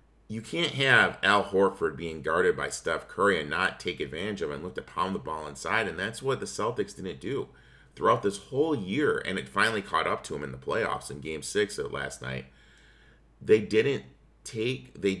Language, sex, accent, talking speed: English, male, American, 215 wpm